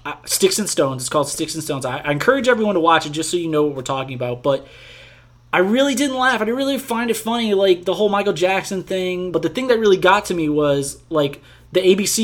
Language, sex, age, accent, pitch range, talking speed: English, male, 20-39, American, 150-210 Hz, 260 wpm